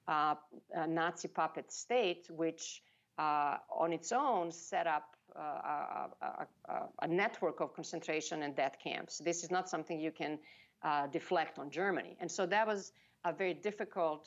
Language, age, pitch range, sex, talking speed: English, 50-69, 160-195 Hz, female, 160 wpm